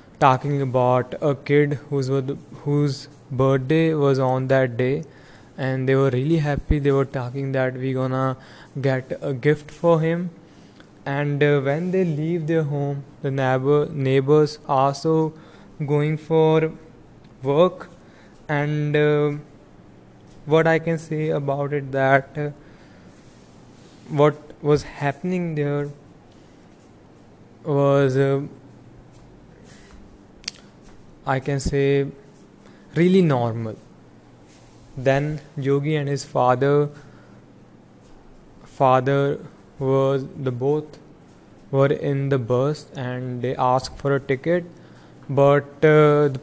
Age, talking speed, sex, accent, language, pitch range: 20-39, 110 wpm, male, Indian, English, 130-150 Hz